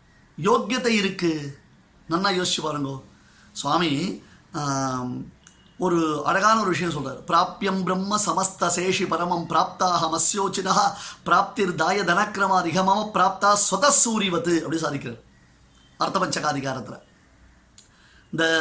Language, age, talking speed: Tamil, 30-49, 80 wpm